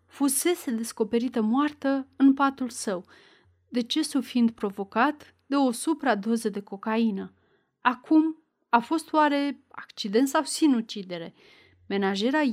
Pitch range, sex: 215-275 Hz, female